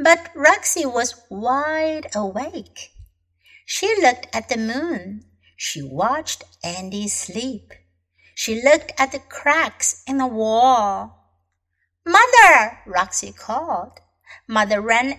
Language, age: Chinese, 60-79